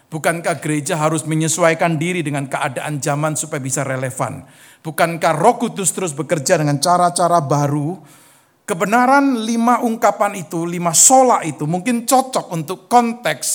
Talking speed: 135 wpm